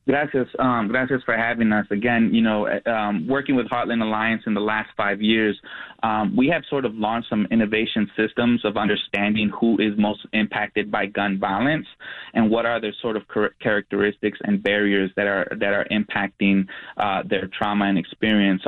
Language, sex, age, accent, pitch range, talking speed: English, male, 20-39, American, 100-115 Hz, 180 wpm